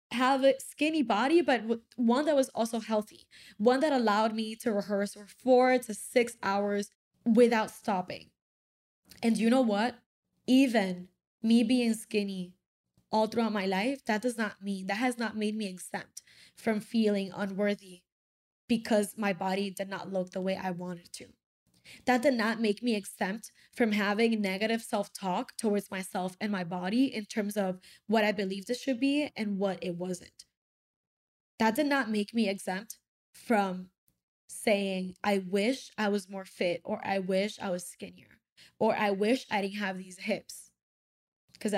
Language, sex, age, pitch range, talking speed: English, female, 10-29, 195-240 Hz, 165 wpm